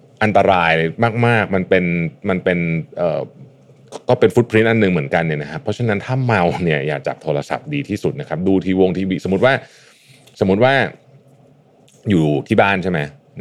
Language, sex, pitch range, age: Thai, male, 85-110 Hz, 30-49